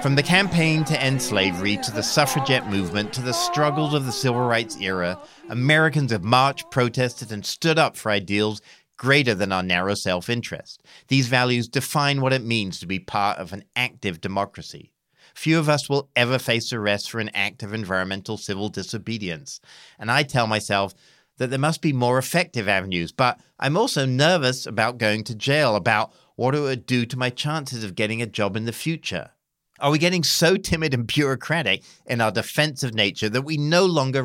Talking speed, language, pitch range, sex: 190 wpm, English, 100-135 Hz, male